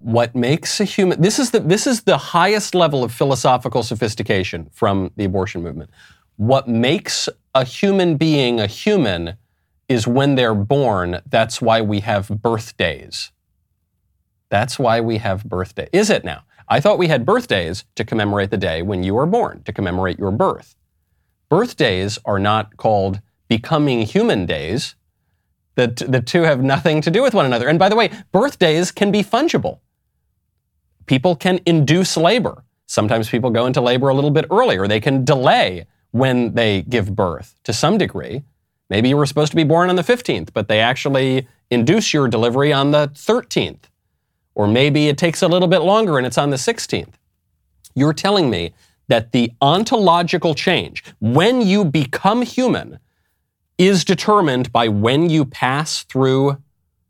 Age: 30-49